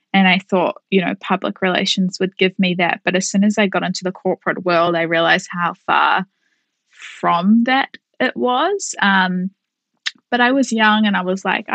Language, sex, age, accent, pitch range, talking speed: English, female, 20-39, Australian, 185-210 Hz, 195 wpm